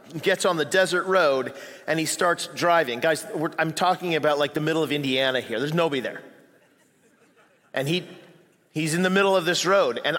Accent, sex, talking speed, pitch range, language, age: American, male, 195 wpm, 145-195 Hz, English, 40-59